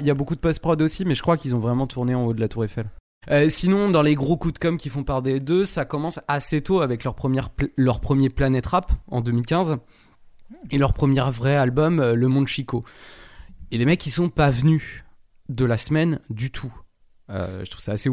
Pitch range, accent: 115-140 Hz, French